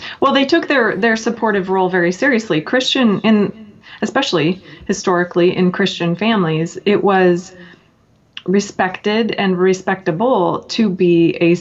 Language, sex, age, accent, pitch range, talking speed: English, female, 30-49, American, 175-210 Hz, 120 wpm